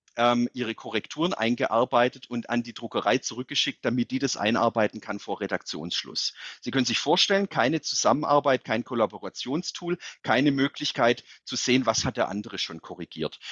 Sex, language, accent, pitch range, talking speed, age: male, German, German, 110-130 Hz, 145 wpm, 40-59